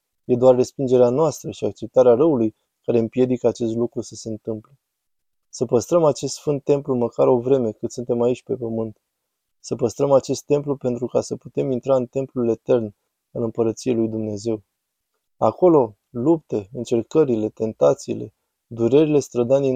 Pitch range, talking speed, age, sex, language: 115-135 Hz, 150 wpm, 20-39, male, Romanian